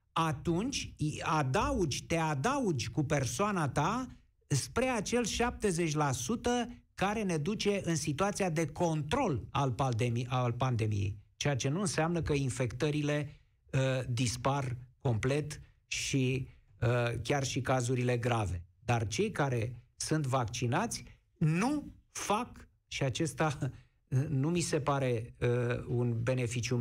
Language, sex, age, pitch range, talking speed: Romanian, male, 50-69, 120-150 Hz, 105 wpm